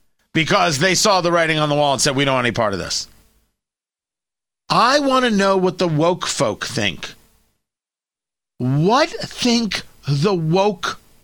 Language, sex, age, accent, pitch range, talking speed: English, male, 40-59, American, 145-210 Hz, 160 wpm